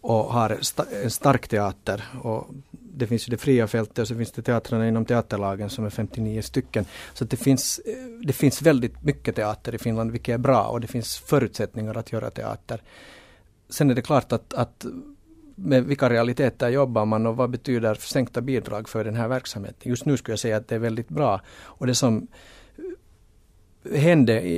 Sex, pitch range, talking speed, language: male, 115-135 Hz, 190 wpm, Swedish